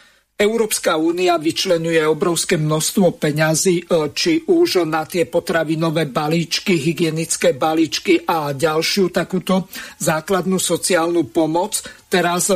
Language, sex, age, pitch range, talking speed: Slovak, male, 50-69, 165-190 Hz, 100 wpm